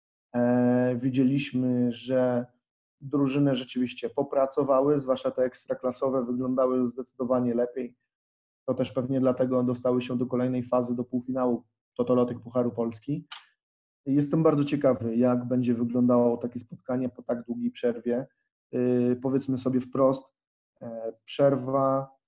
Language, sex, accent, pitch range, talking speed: Polish, male, native, 125-135 Hz, 110 wpm